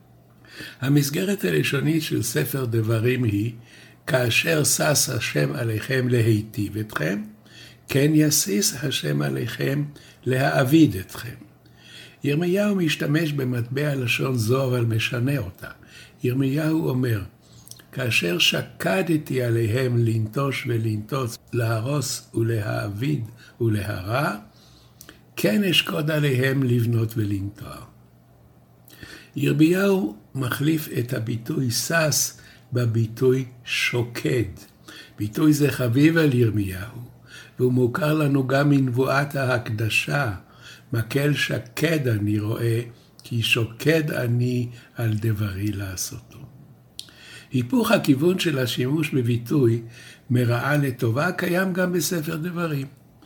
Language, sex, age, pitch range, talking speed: Hebrew, male, 60-79, 115-150 Hz, 90 wpm